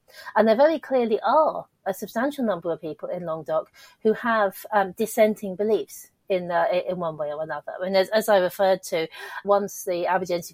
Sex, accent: female, British